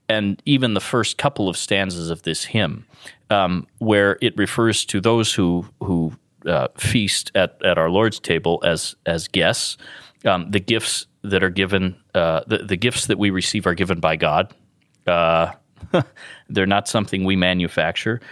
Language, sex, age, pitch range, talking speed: English, male, 30-49, 90-110 Hz, 170 wpm